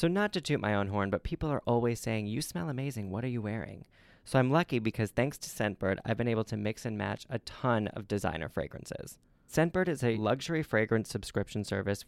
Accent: American